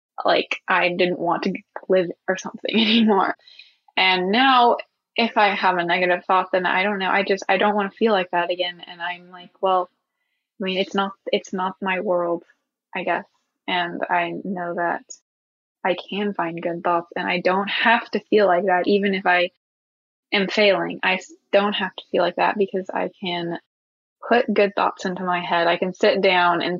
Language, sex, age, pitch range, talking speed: English, female, 20-39, 180-210 Hz, 195 wpm